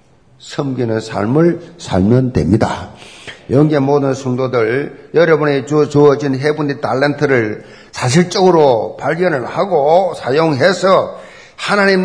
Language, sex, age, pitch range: Korean, male, 50-69, 130-190 Hz